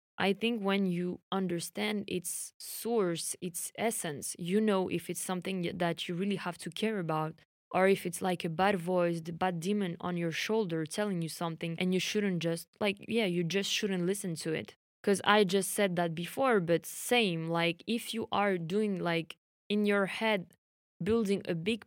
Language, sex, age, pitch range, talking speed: English, female, 20-39, 175-205 Hz, 190 wpm